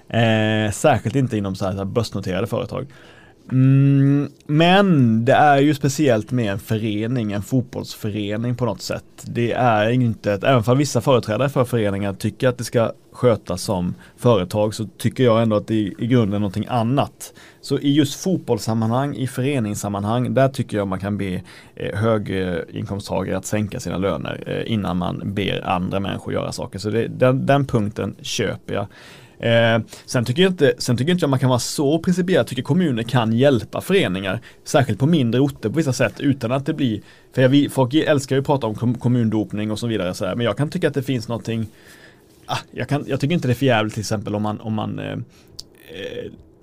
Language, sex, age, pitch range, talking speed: Swedish, male, 30-49, 105-135 Hz, 200 wpm